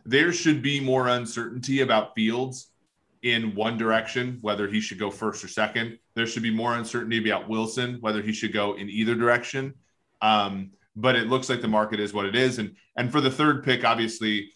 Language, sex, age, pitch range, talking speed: English, male, 30-49, 105-125 Hz, 200 wpm